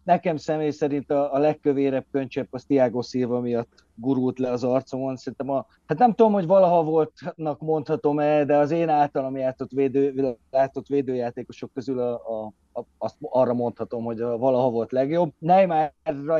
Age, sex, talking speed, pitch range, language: 30-49, male, 155 wpm, 125-155 Hz, Hungarian